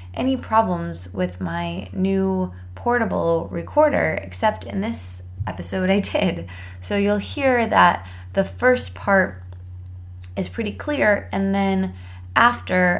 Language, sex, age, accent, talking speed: English, female, 20-39, American, 120 wpm